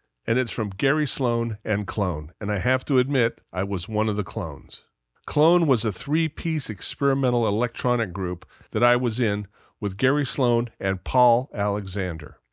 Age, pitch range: 40-59, 105-135 Hz